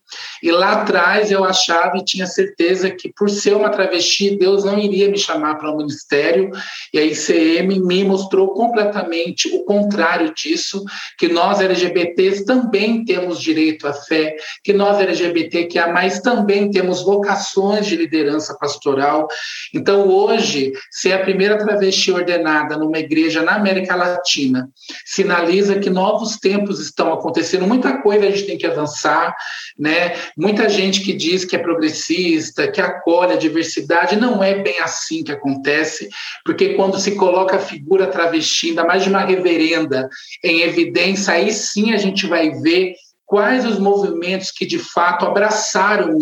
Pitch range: 170-205 Hz